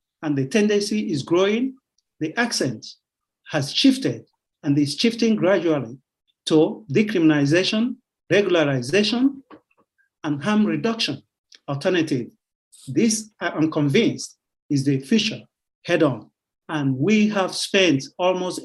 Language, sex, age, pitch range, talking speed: English, male, 50-69, 145-210 Hz, 110 wpm